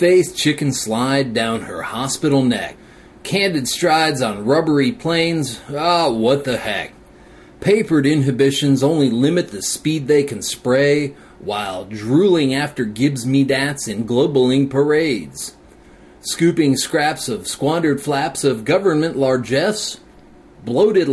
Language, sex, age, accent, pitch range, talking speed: English, male, 40-59, American, 135-190 Hz, 115 wpm